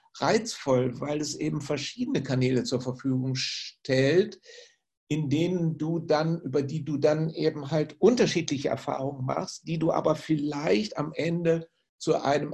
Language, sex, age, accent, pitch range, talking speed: German, male, 60-79, German, 135-155 Hz, 145 wpm